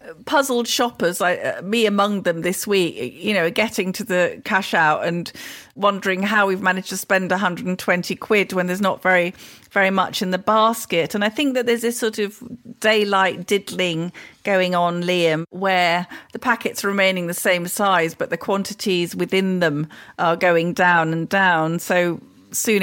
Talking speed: 170 wpm